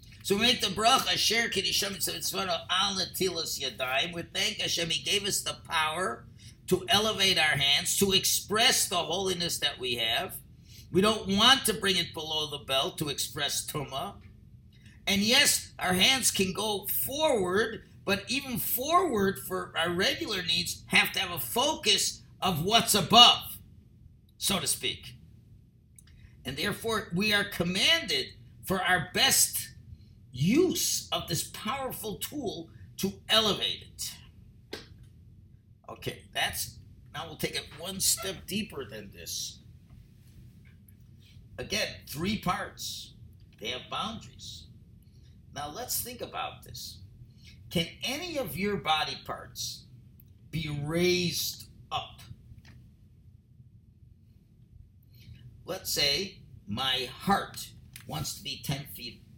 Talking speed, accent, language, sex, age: 120 wpm, American, English, male, 50-69